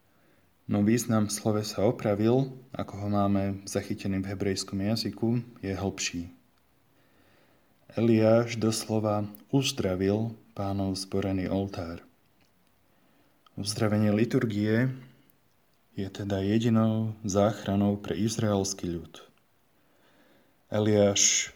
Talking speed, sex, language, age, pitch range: 85 wpm, male, Slovak, 20-39, 100-115 Hz